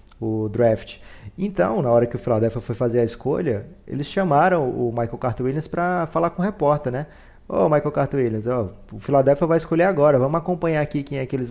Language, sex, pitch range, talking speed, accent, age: Portuguese, male, 120-150 Hz, 220 wpm, Brazilian, 20-39